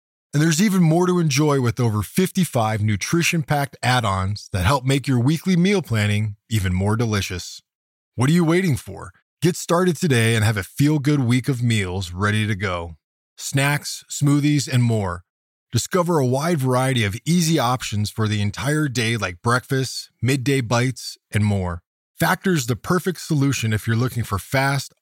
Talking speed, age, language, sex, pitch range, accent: 165 wpm, 20-39, English, male, 105-150 Hz, American